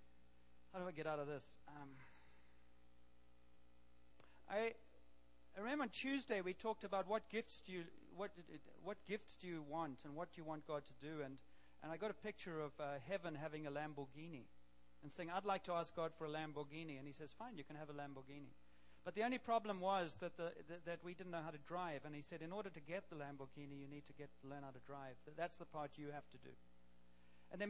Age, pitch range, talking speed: 40-59, 140-180 Hz, 230 wpm